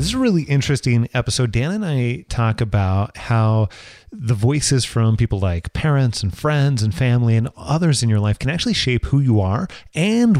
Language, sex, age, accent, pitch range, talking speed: English, male, 30-49, American, 100-135 Hz, 195 wpm